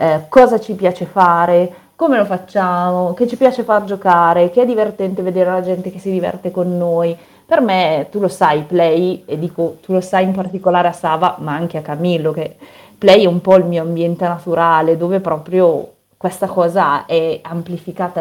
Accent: native